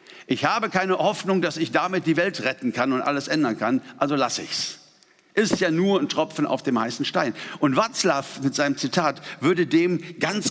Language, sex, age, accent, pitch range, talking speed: German, male, 60-79, German, 155-205 Hz, 205 wpm